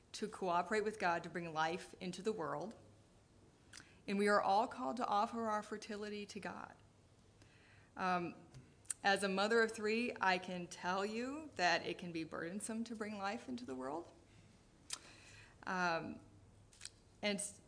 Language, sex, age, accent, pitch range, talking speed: English, female, 30-49, American, 145-215 Hz, 150 wpm